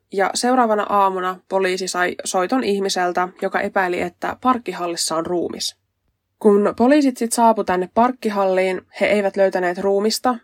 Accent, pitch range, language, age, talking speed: native, 180-205 Hz, Finnish, 20-39, 125 wpm